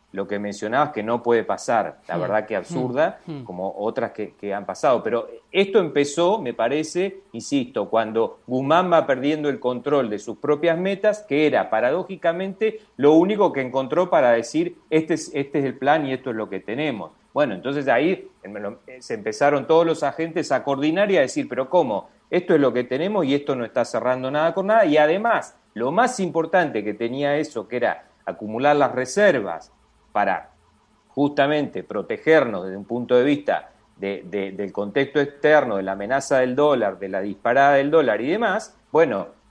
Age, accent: 40-59, Argentinian